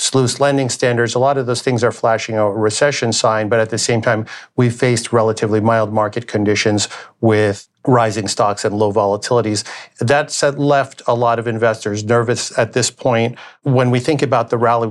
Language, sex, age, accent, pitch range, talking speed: English, male, 50-69, American, 110-125 Hz, 185 wpm